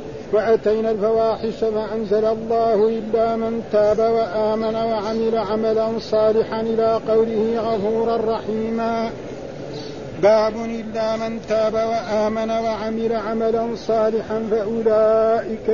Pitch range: 220-230 Hz